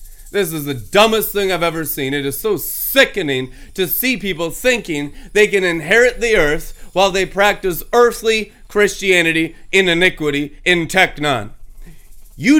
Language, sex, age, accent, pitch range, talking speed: English, male, 30-49, American, 190-275 Hz, 150 wpm